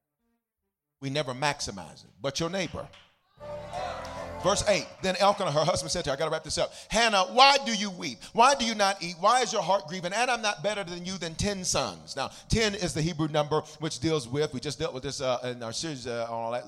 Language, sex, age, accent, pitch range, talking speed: English, male, 40-59, American, 130-195 Hz, 235 wpm